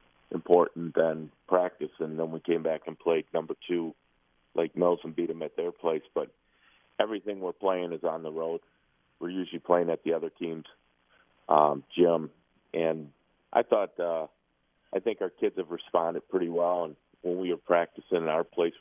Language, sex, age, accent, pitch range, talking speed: English, male, 40-59, American, 80-90 Hz, 180 wpm